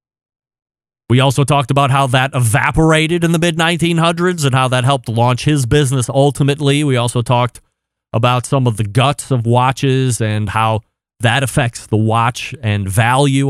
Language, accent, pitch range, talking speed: English, American, 110-140 Hz, 165 wpm